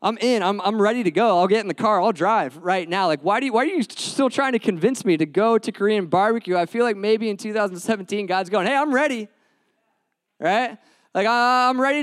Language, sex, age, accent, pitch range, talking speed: English, male, 20-39, American, 185-230 Hz, 245 wpm